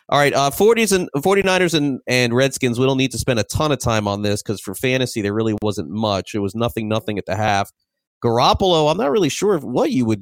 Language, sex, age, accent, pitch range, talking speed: English, male, 30-49, American, 105-130 Hz, 245 wpm